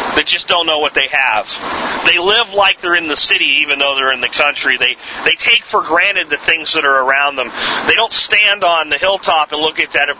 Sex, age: male, 40-59